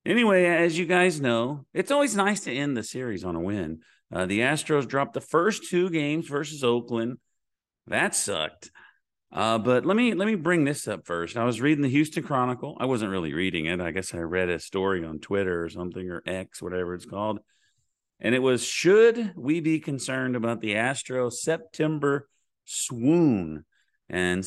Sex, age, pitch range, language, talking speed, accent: male, 40-59, 105-150 Hz, English, 185 wpm, American